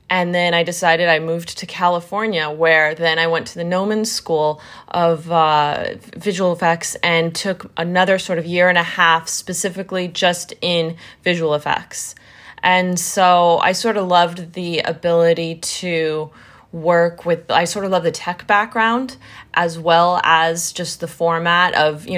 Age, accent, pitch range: 20-39, American, 165-185 Hz